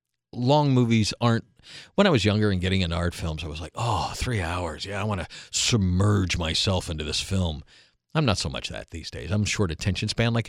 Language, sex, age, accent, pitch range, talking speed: English, male, 50-69, American, 85-110 Hz, 225 wpm